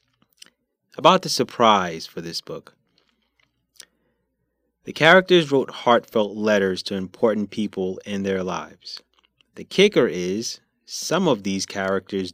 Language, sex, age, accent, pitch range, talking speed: English, male, 20-39, American, 95-115 Hz, 115 wpm